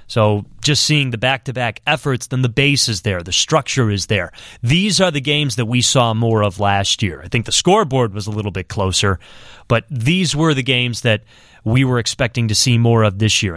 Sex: male